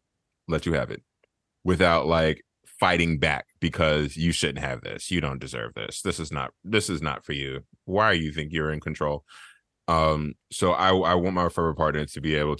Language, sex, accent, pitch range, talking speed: English, male, American, 80-100 Hz, 205 wpm